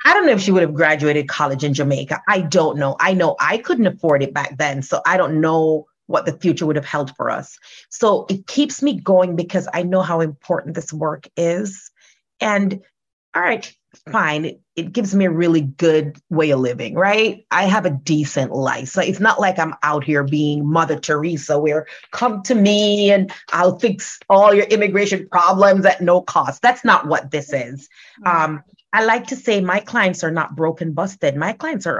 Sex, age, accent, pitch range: female, 30-49, American, 150-195 Hz